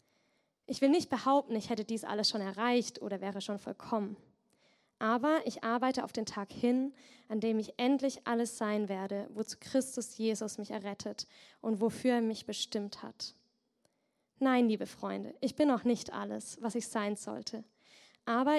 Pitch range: 215-255 Hz